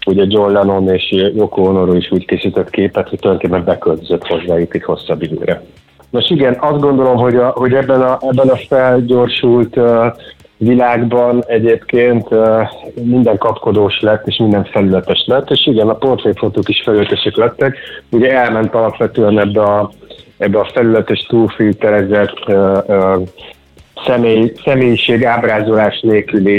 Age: 30-49